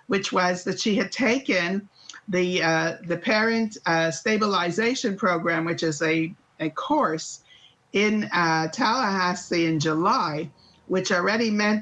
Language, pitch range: English, 175-225 Hz